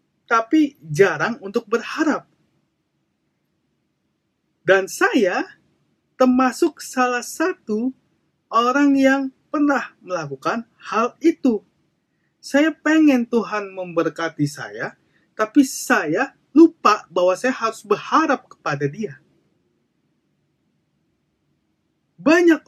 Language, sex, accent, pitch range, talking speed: Indonesian, male, native, 165-265 Hz, 80 wpm